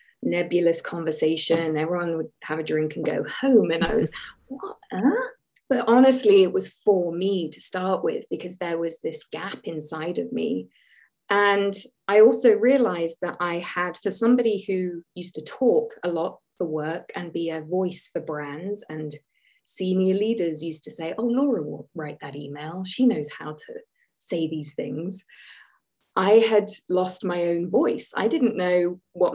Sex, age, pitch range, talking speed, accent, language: female, 20-39, 165-230 Hz, 170 wpm, British, English